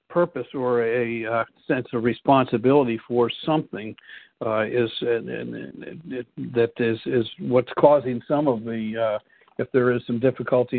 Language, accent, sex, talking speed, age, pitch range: English, American, male, 155 wpm, 60-79, 115-130 Hz